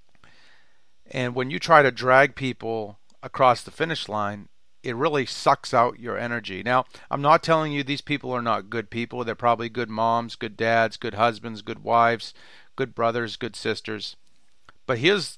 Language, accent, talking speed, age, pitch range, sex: English, American, 170 wpm, 40-59, 115-135 Hz, male